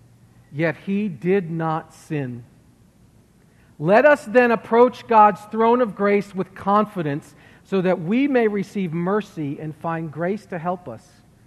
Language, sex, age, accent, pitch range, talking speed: English, male, 50-69, American, 135-185 Hz, 140 wpm